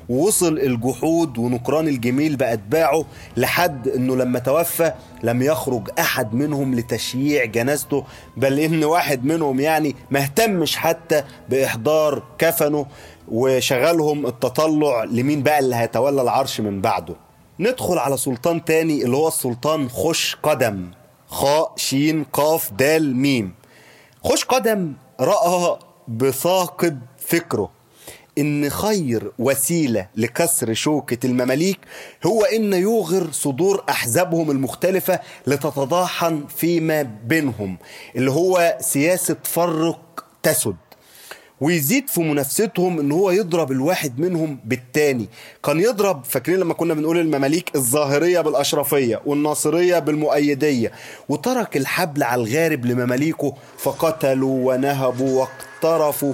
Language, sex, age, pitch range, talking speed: Arabic, male, 30-49, 130-165 Hz, 110 wpm